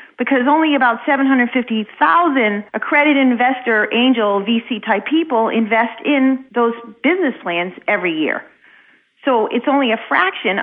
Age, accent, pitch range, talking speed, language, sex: 40-59, American, 210-265 Hz, 120 wpm, English, female